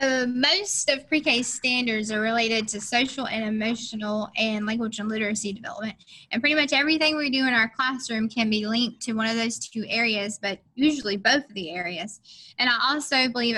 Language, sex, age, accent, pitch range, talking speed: English, female, 10-29, American, 215-250 Hz, 200 wpm